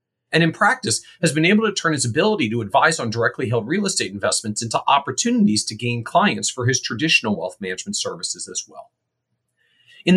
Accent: American